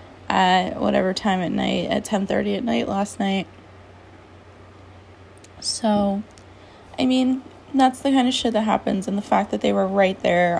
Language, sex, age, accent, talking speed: English, female, 20-39, American, 165 wpm